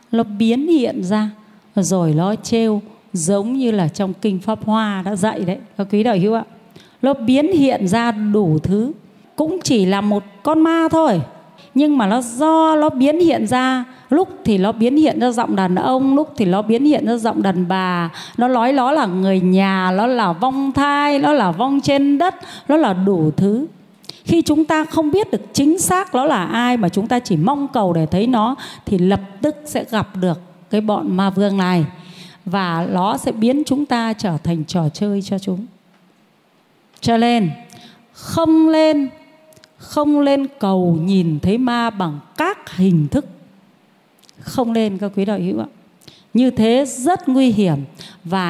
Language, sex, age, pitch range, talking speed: Vietnamese, female, 30-49, 190-265 Hz, 185 wpm